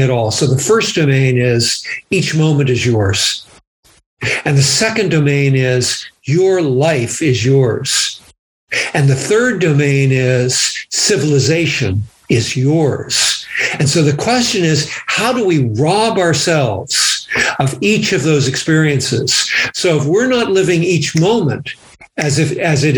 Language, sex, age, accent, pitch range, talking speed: English, male, 60-79, American, 140-190 Hz, 140 wpm